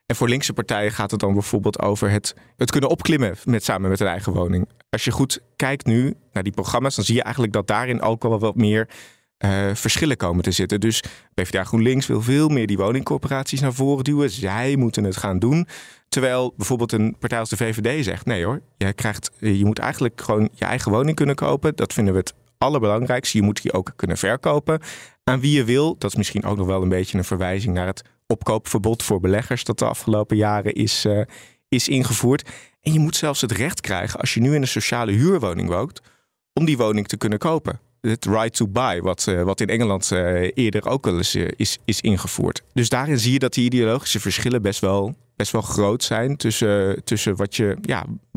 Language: Dutch